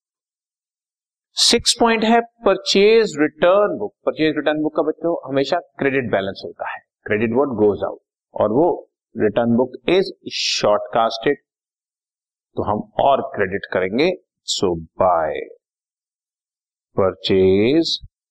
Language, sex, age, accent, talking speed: Hindi, male, 50-69, native, 110 wpm